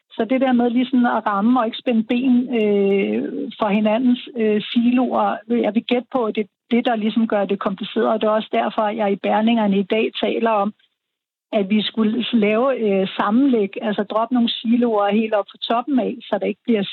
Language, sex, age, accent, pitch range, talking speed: Danish, female, 60-79, native, 210-245 Hz, 215 wpm